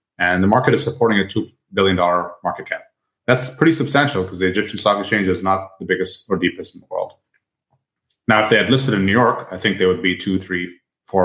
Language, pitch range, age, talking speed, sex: English, 90-110 Hz, 30-49, 230 wpm, male